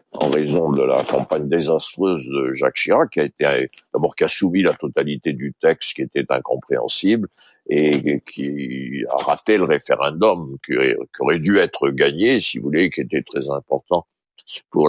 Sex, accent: male, French